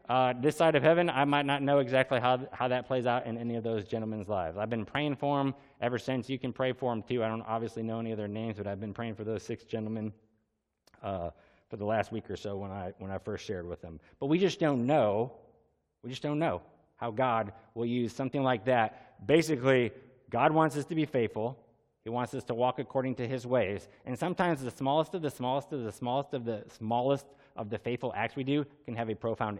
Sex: male